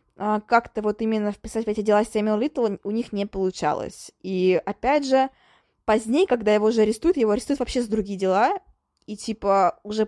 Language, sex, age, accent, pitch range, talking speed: Russian, female, 20-39, native, 200-245 Hz, 185 wpm